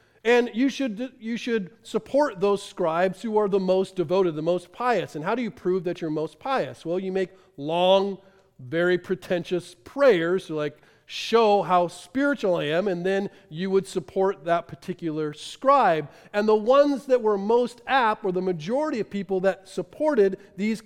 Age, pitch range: 40-59, 155-210 Hz